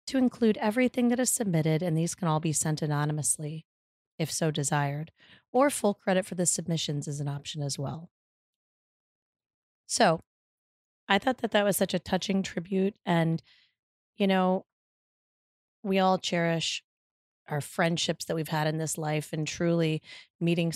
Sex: female